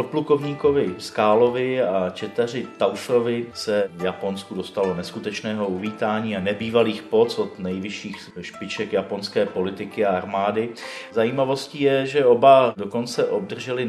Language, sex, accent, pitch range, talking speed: Czech, male, native, 110-140 Hz, 115 wpm